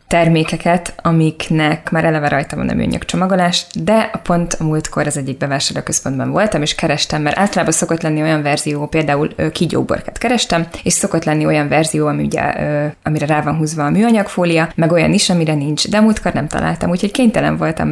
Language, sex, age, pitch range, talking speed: Hungarian, female, 20-39, 150-175 Hz, 175 wpm